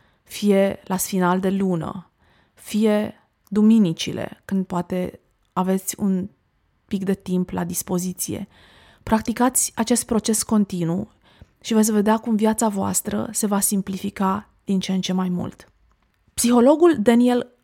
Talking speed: 125 wpm